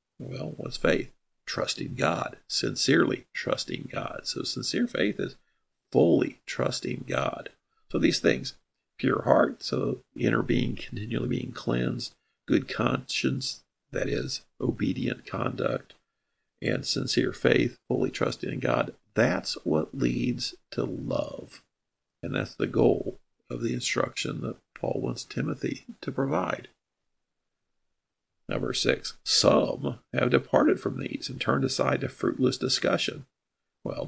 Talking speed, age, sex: 125 wpm, 50-69, male